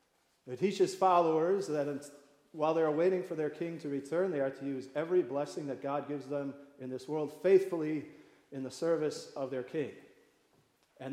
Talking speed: 190 wpm